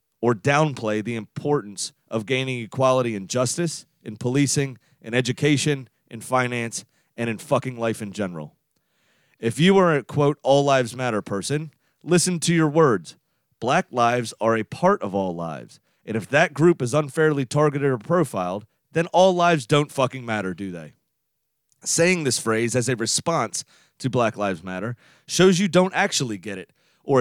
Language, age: English, 30-49